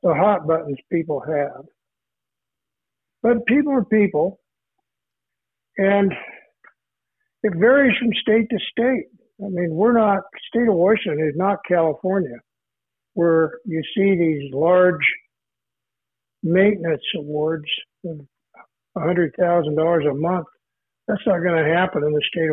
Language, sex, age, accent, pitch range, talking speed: English, male, 60-79, American, 160-210 Hz, 120 wpm